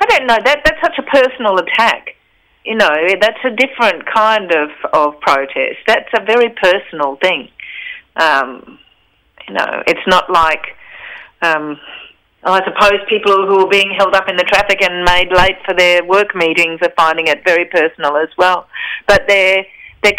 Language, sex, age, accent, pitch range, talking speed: English, female, 40-59, Australian, 165-235 Hz, 170 wpm